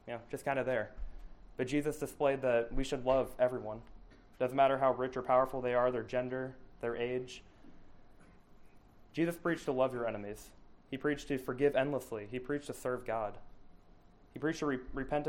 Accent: American